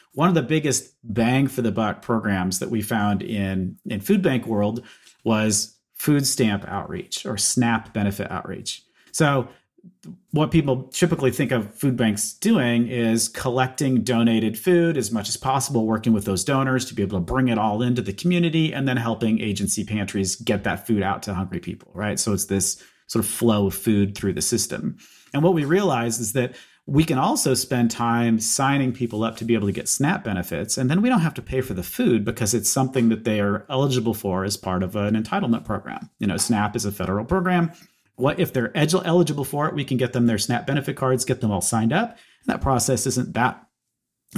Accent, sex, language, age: American, male, English, 40-59